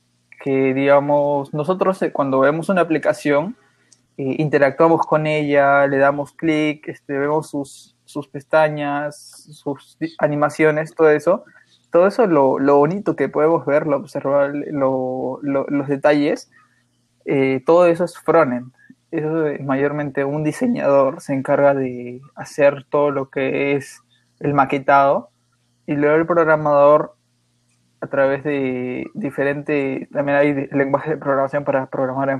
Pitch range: 135-150 Hz